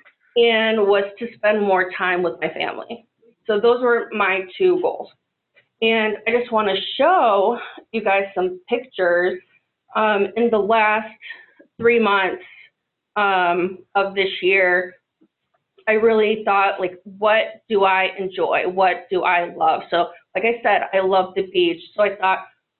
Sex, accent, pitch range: female, American, 185-230 Hz